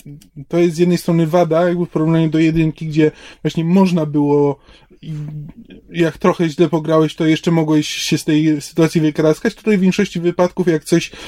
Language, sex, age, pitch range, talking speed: Polish, male, 20-39, 160-180 Hz, 175 wpm